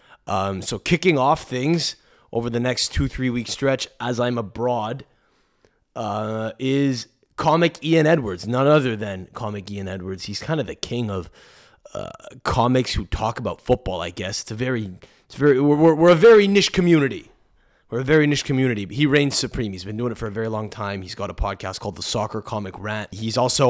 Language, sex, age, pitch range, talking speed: English, male, 20-39, 100-130 Hz, 205 wpm